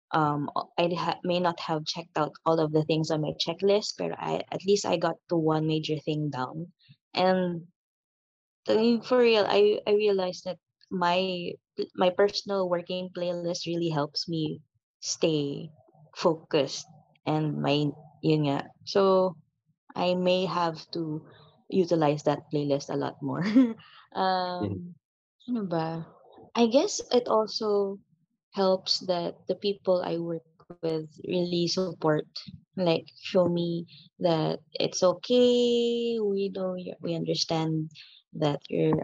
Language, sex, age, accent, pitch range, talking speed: Filipino, female, 20-39, native, 155-185 Hz, 130 wpm